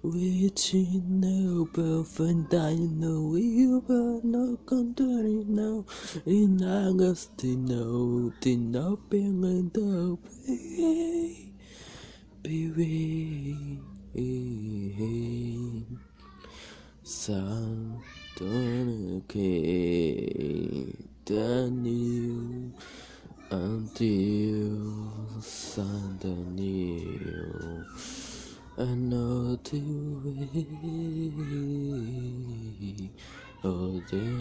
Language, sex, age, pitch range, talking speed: Portuguese, male, 20-39, 100-160 Hz, 45 wpm